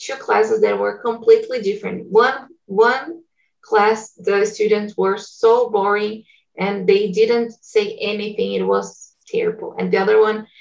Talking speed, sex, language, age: 145 wpm, female, Portuguese, 20-39